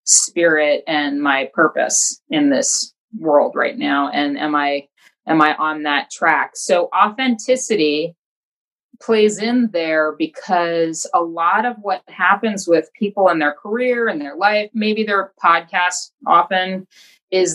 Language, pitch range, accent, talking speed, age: English, 160-215 Hz, American, 140 wpm, 30-49